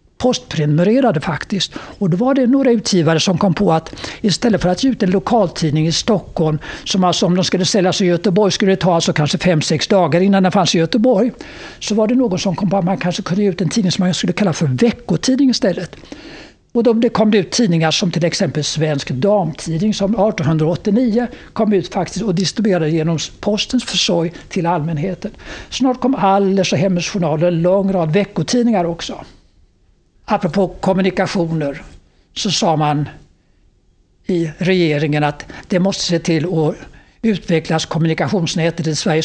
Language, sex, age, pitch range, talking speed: Swedish, male, 60-79, 165-210 Hz, 175 wpm